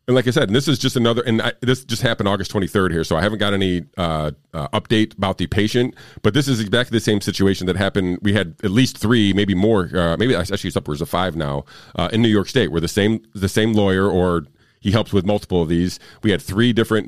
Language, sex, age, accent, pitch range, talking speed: English, male, 40-59, American, 85-105 Hz, 260 wpm